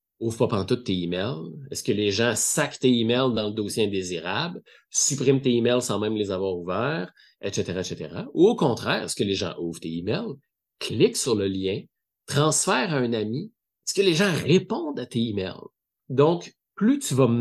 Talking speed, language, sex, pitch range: 195 wpm, French, male, 95-125 Hz